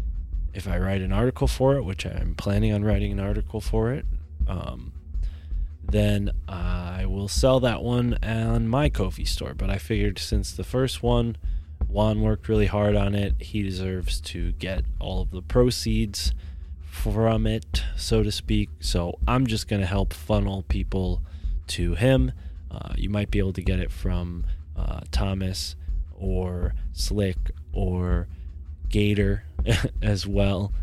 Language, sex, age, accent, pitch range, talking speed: English, male, 20-39, American, 75-105 Hz, 155 wpm